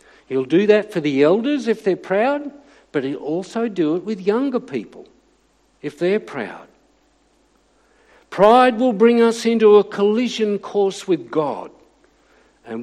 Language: English